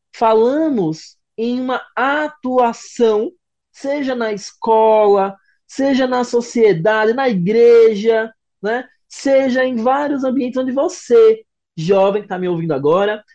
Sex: male